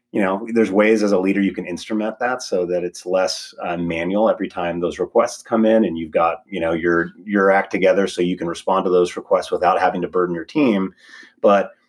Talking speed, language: 230 wpm, English